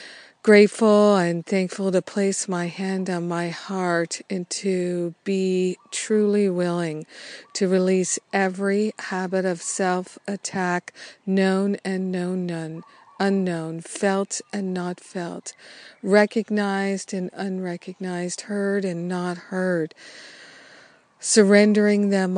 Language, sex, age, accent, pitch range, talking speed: English, female, 50-69, American, 180-200 Hz, 100 wpm